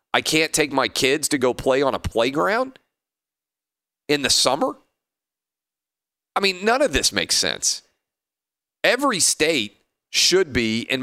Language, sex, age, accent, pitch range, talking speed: English, male, 40-59, American, 110-140 Hz, 140 wpm